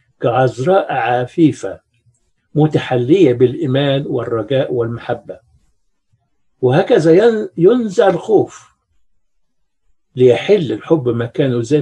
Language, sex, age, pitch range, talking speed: Arabic, male, 60-79, 120-170 Hz, 65 wpm